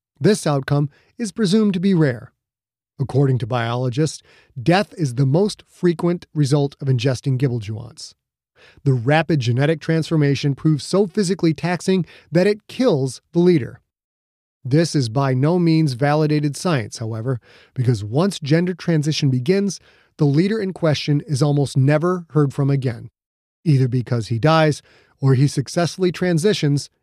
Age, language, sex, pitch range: 30-49, English, male, 130-165 Hz